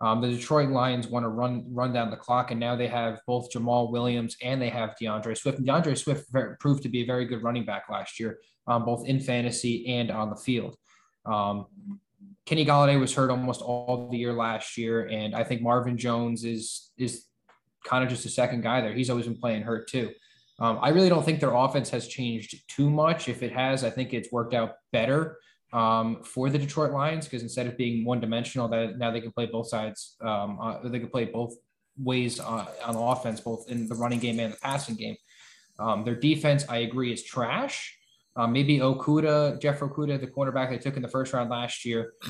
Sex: male